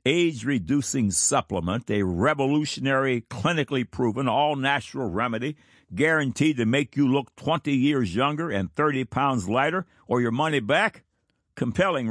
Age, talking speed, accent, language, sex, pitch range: 60-79, 125 wpm, American, English, male, 100-140 Hz